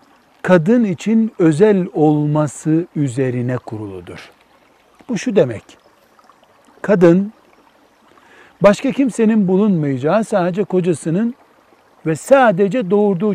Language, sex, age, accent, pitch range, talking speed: Turkish, male, 60-79, native, 155-220 Hz, 80 wpm